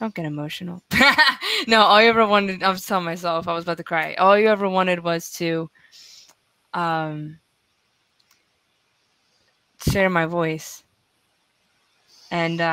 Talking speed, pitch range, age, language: 130 wpm, 170-210 Hz, 20-39, English